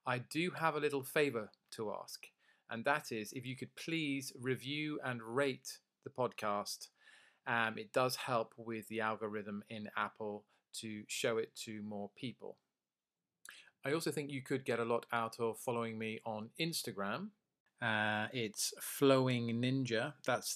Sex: male